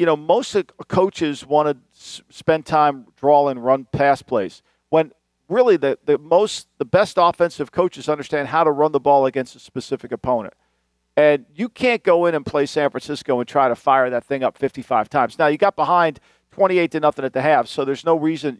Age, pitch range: 50-69, 130-180 Hz